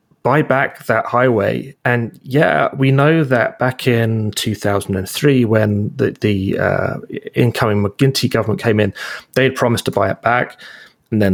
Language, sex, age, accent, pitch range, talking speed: English, male, 30-49, British, 105-145 Hz, 160 wpm